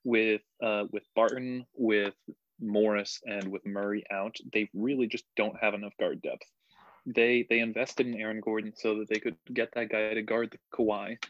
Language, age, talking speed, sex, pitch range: English, 20-39, 185 wpm, male, 105-120 Hz